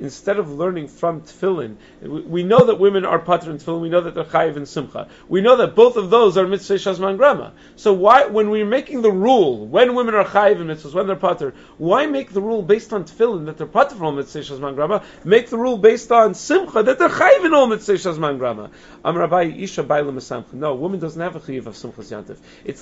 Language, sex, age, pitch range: English, male, 40-59, 150-205 Hz